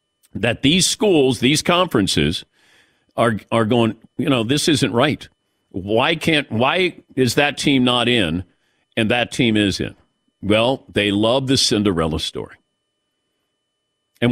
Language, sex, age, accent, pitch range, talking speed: English, male, 50-69, American, 110-150 Hz, 140 wpm